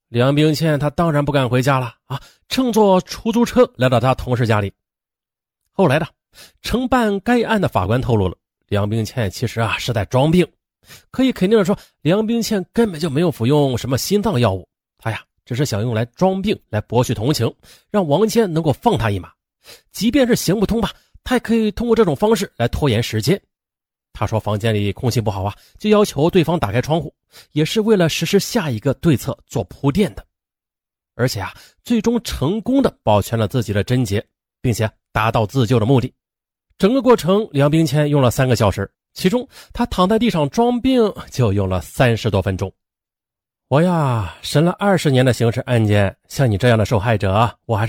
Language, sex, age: Chinese, male, 30-49